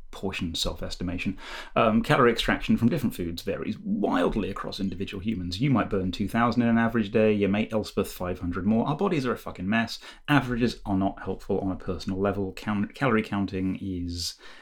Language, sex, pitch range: English, male, 95-115 Hz